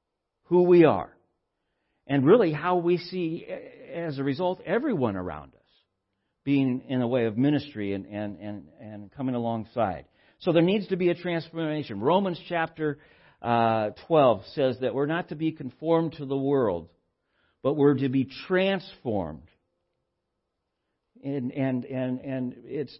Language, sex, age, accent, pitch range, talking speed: English, male, 60-79, American, 125-155 Hz, 150 wpm